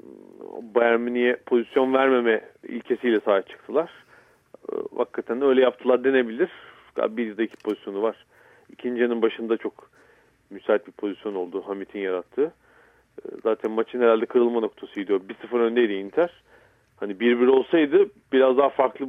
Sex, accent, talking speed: male, native, 130 wpm